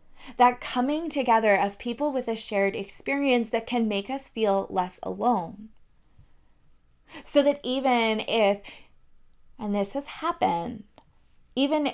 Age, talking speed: 20-39, 125 wpm